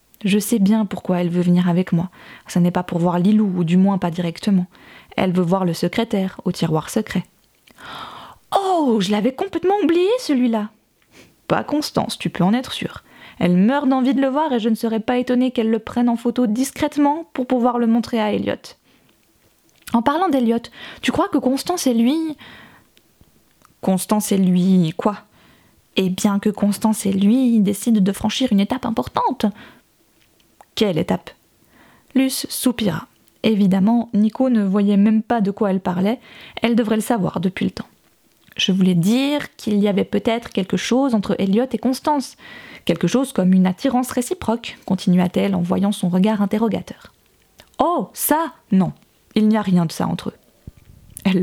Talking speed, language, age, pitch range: 175 wpm, French, 20-39, 190-250 Hz